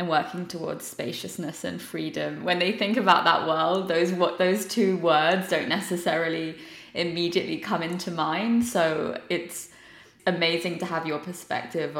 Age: 20-39